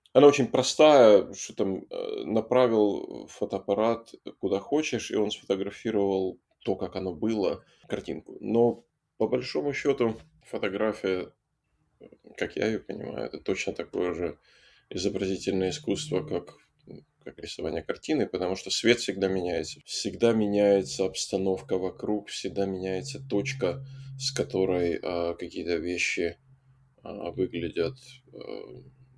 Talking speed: 115 wpm